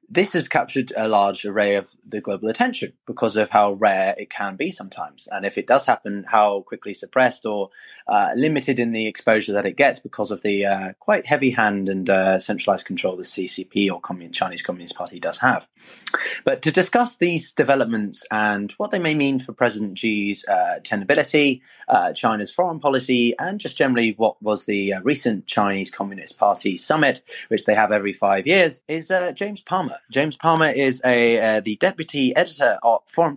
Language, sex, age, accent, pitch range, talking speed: English, male, 20-39, British, 105-140 Hz, 190 wpm